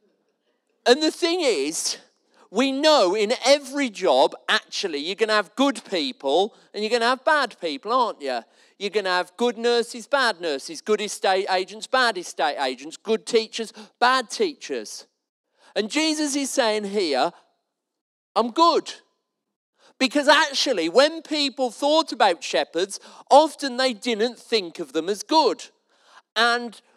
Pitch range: 200-280 Hz